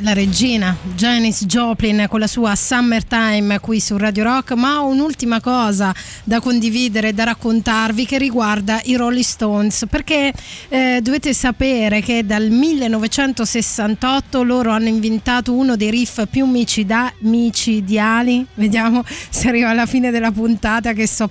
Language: Italian